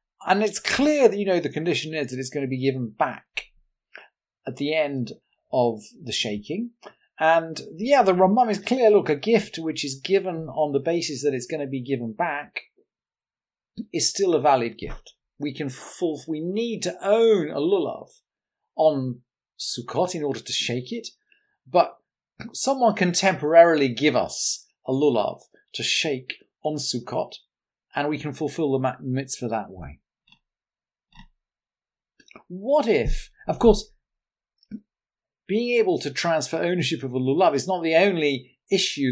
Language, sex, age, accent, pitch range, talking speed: English, male, 40-59, British, 135-200 Hz, 155 wpm